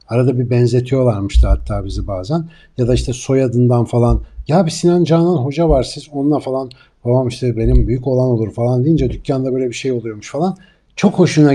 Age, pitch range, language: 60-79, 115-145 Hz, Turkish